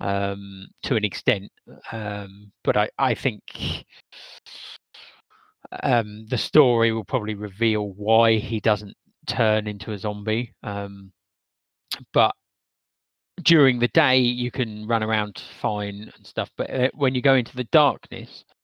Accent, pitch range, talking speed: British, 105-125 Hz, 130 wpm